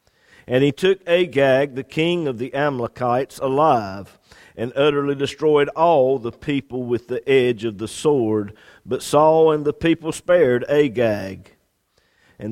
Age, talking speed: 50-69, 145 wpm